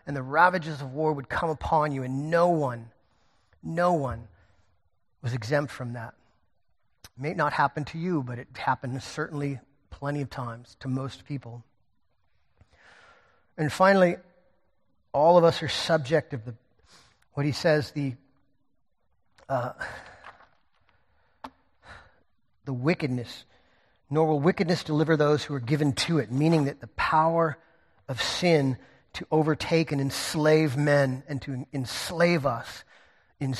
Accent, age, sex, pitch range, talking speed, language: American, 40-59, male, 130-160 Hz, 135 wpm, English